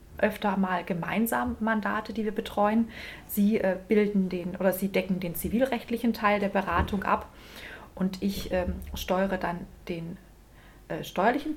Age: 30-49